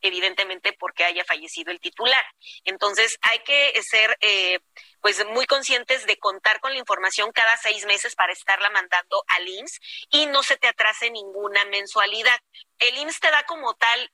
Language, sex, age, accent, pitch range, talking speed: Spanish, female, 30-49, Mexican, 205-280 Hz, 170 wpm